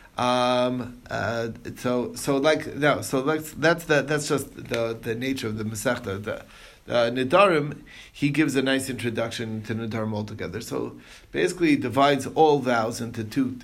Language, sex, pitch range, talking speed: English, male, 110-125 Hz, 165 wpm